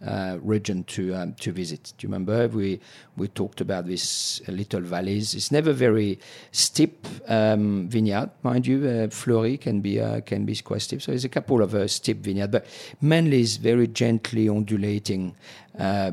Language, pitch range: English, 95-115 Hz